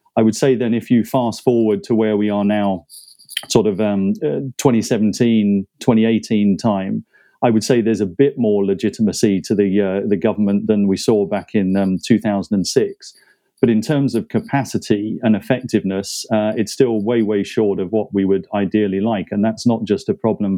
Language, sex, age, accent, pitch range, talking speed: English, male, 30-49, British, 100-110 Hz, 190 wpm